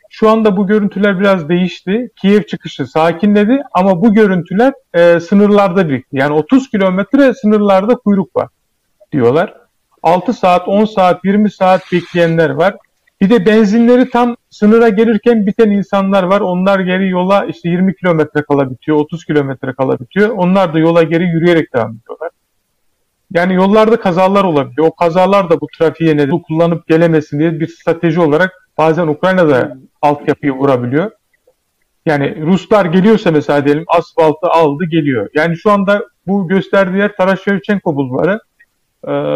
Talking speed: 145 wpm